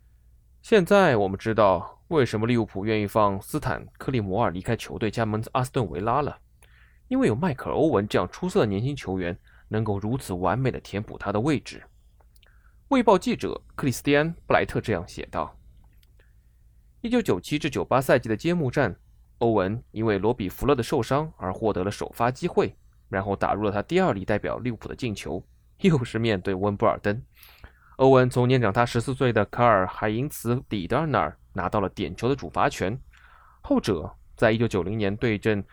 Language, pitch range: Chinese, 100-135 Hz